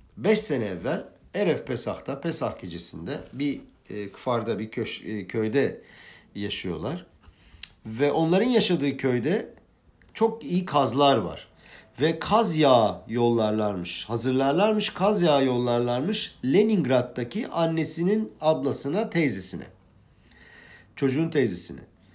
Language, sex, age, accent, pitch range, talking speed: Turkish, male, 50-69, native, 120-185 Hz, 100 wpm